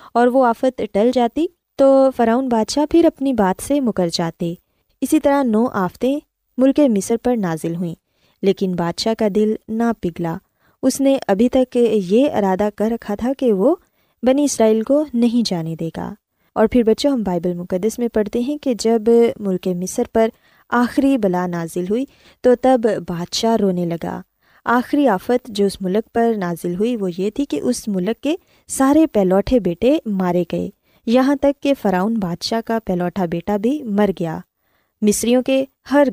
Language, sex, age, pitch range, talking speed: Urdu, female, 20-39, 190-255 Hz, 175 wpm